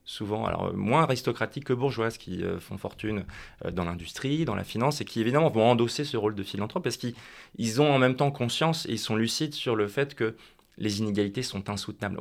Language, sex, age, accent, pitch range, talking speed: French, male, 20-39, French, 100-130 Hz, 225 wpm